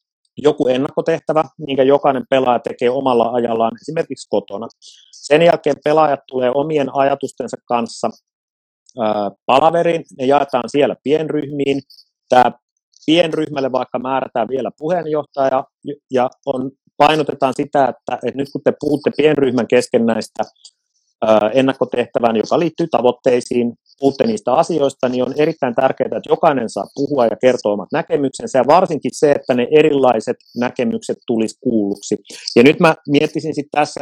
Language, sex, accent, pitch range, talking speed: Finnish, male, native, 125-150 Hz, 125 wpm